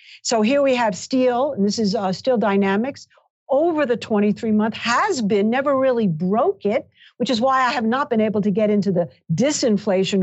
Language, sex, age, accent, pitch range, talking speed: English, female, 50-69, American, 195-245 Hz, 200 wpm